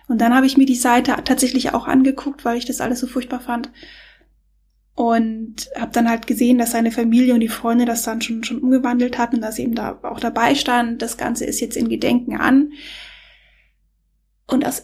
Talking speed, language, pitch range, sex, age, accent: 200 wpm, German, 235-270 Hz, female, 10-29, German